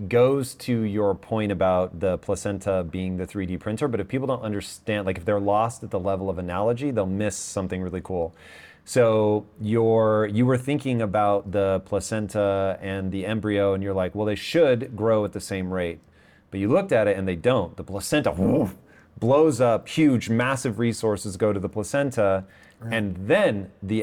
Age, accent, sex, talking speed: 30-49, American, male, 185 wpm